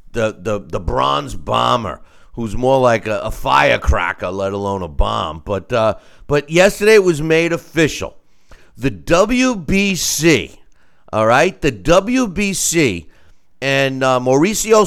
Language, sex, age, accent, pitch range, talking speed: English, male, 50-69, American, 100-160 Hz, 130 wpm